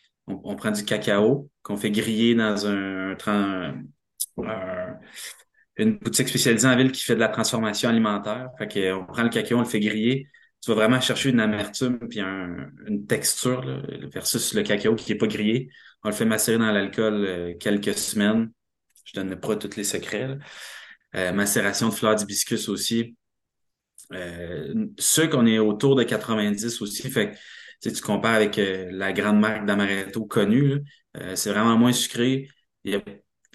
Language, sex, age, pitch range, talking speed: French, male, 20-39, 105-125 Hz, 175 wpm